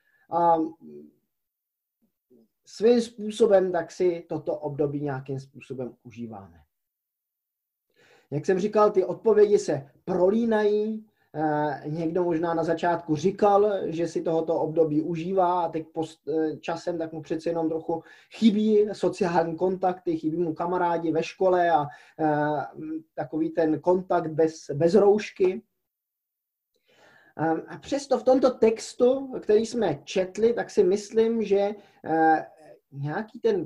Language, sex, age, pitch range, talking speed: Czech, male, 20-39, 155-200 Hz, 115 wpm